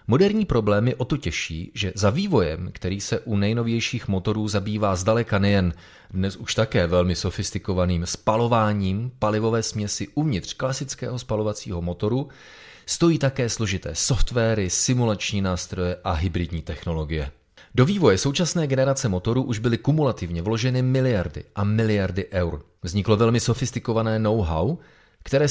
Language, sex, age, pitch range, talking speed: Czech, male, 30-49, 90-120 Hz, 130 wpm